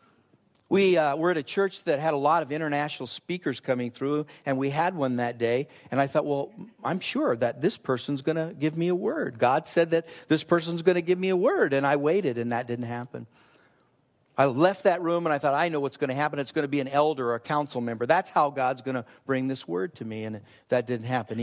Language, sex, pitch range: English, male, 120-150 Hz